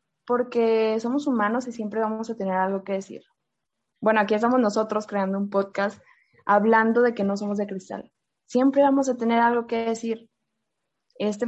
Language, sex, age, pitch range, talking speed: Spanish, female, 20-39, 200-240 Hz, 175 wpm